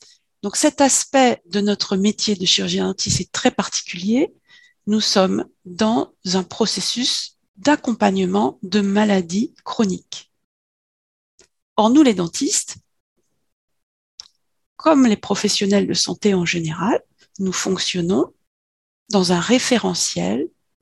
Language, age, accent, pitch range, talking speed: French, 40-59, French, 185-260 Hz, 105 wpm